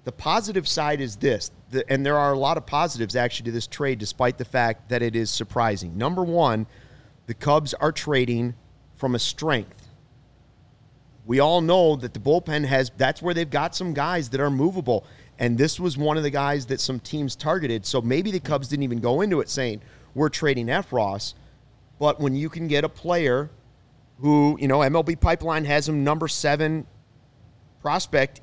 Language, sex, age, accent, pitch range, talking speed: English, male, 30-49, American, 120-155 Hz, 190 wpm